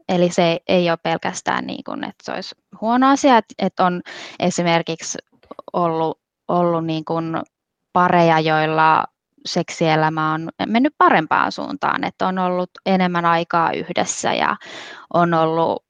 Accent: native